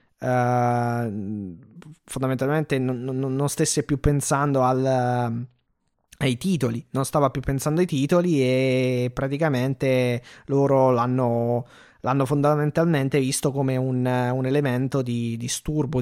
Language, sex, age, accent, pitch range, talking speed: Italian, male, 20-39, native, 125-150 Hz, 105 wpm